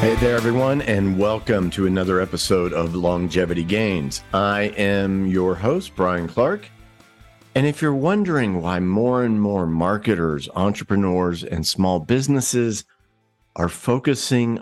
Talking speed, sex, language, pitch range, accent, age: 130 wpm, male, English, 90-120 Hz, American, 50-69